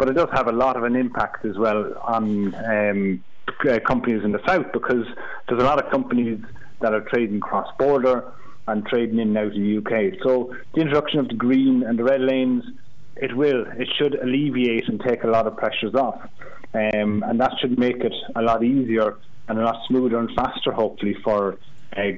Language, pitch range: English, 105-125 Hz